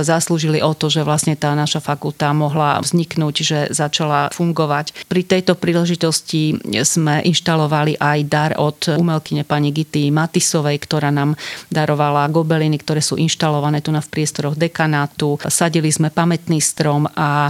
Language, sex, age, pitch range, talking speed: Slovak, female, 40-59, 145-160 Hz, 145 wpm